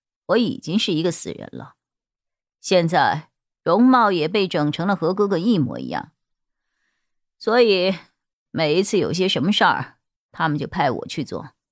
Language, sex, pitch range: Chinese, female, 140-190 Hz